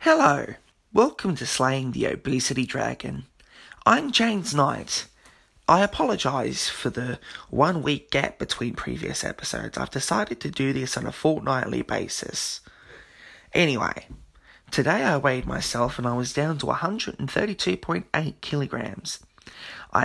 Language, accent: English, Australian